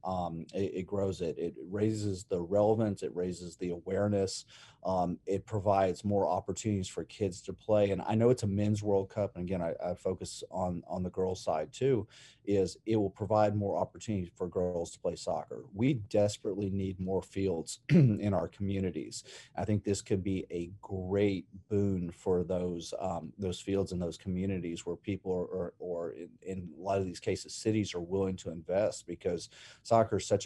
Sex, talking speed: male, 195 wpm